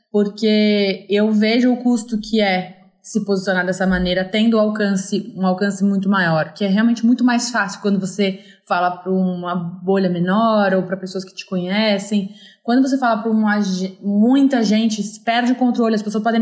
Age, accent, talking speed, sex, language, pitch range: 20-39, Brazilian, 175 wpm, female, Portuguese, 190-230 Hz